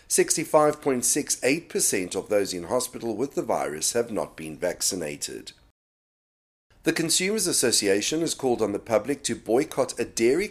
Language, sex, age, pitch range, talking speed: English, male, 50-69, 110-155 Hz, 130 wpm